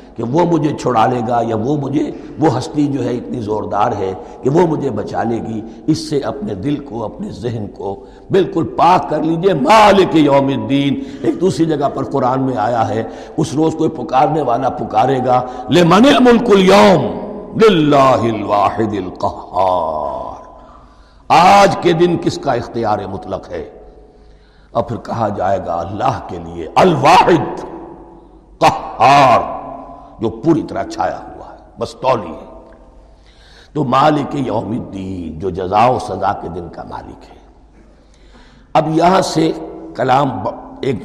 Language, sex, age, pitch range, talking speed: Urdu, male, 60-79, 105-165 Hz, 140 wpm